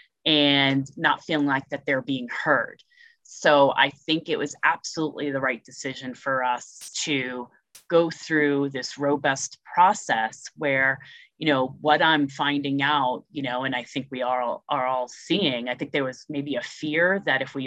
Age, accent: 30-49, American